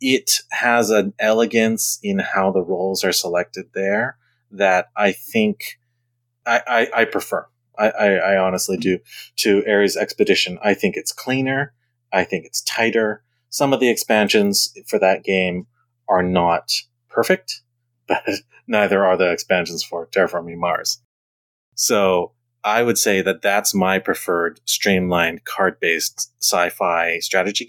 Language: English